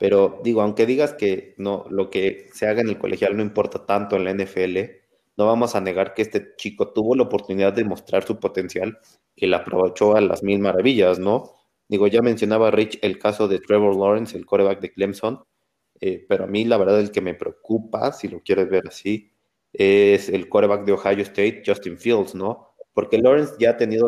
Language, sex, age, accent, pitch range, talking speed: Spanish, male, 30-49, Mexican, 95-110 Hz, 210 wpm